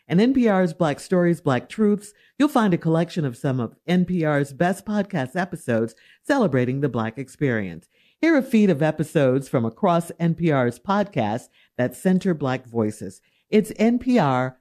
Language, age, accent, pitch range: English, 50-69, American, 140-215 Hz